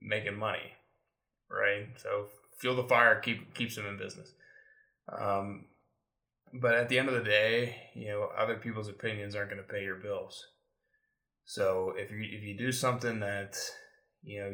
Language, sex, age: English, male, 20-39